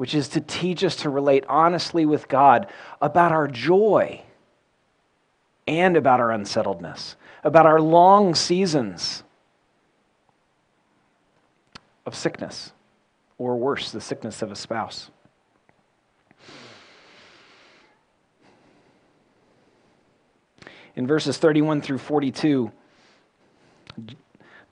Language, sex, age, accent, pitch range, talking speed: English, male, 40-59, American, 125-155 Hz, 85 wpm